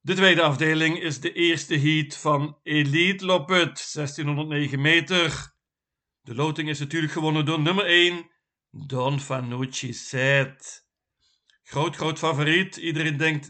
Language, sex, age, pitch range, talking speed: Dutch, male, 60-79, 140-165 Hz, 125 wpm